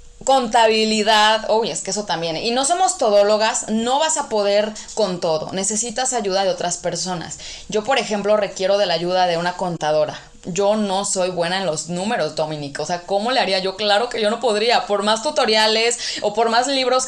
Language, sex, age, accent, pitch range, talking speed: English, female, 20-39, Mexican, 180-220 Hz, 205 wpm